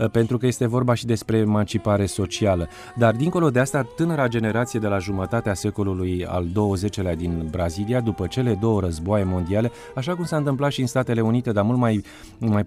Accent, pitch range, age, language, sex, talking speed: native, 105-130 Hz, 30-49, Romanian, male, 185 wpm